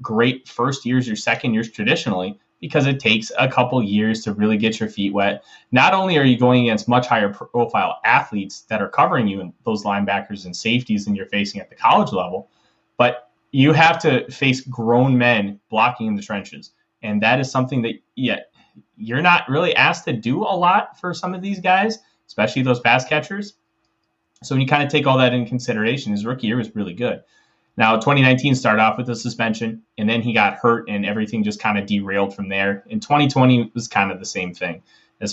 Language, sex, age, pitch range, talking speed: English, male, 20-39, 105-130 Hz, 210 wpm